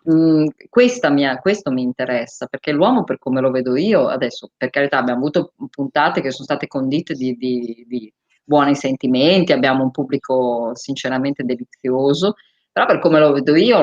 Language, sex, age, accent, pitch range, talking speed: Italian, female, 20-39, native, 135-180 Hz, 165 wpm